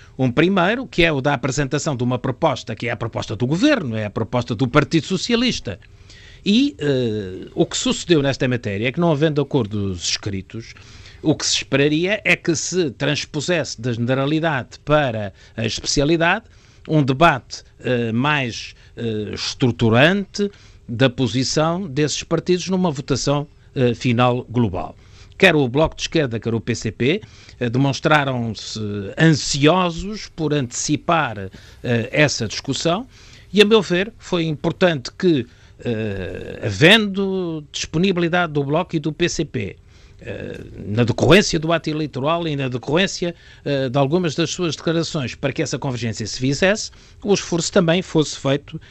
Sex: male